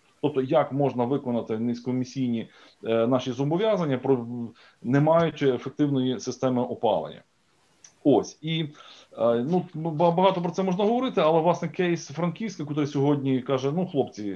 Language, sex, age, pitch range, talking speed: Ukrainian, male, 20-39, 120-150 Hz, 135 wpm